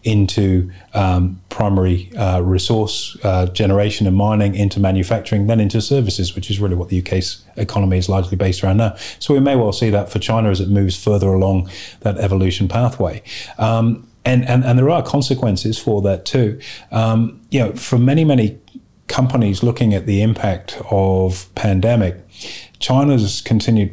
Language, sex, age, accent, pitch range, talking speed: English, male, 30-49, British, 95-110 Hz, 170 wpm